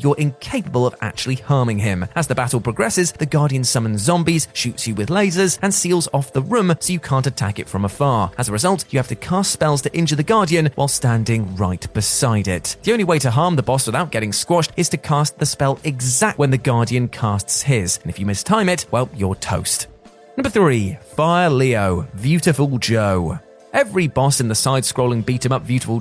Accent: British